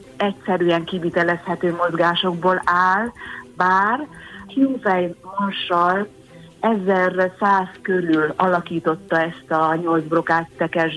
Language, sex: Hungarian, female